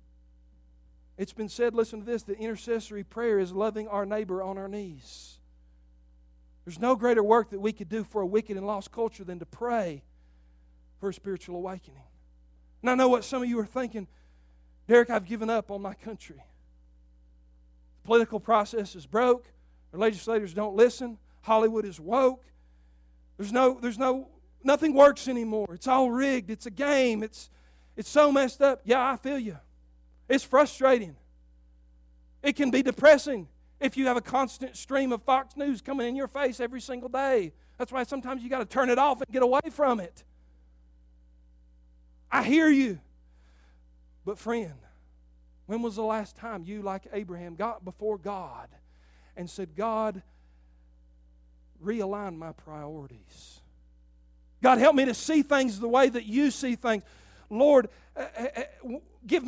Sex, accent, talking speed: male, American, 160 wpm